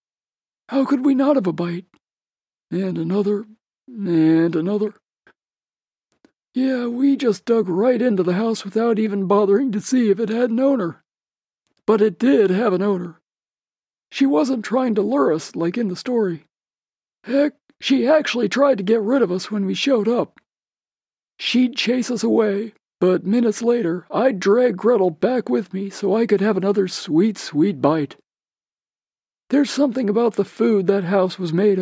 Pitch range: 200-255 Hz